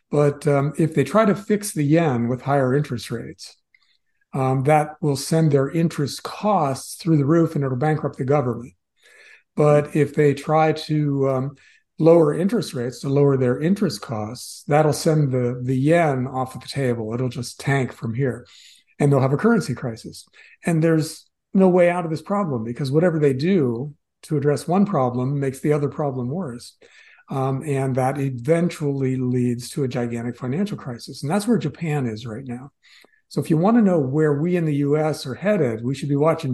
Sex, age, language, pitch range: male, 50-69, English, 125-160 Hz